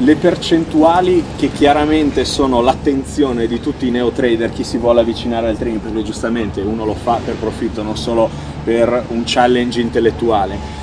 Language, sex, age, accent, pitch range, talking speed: Italian, male, 30-49, native, 105-125 Hz, 165 wpm